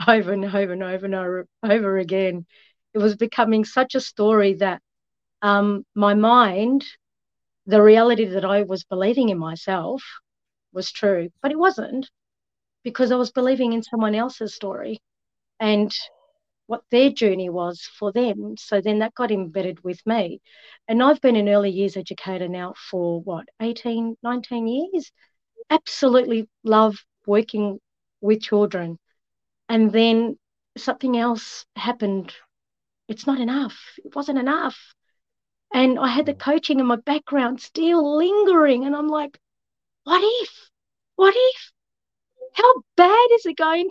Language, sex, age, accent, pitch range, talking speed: English, female, 40-59, Australian, 205-280 Hz, 140 wpm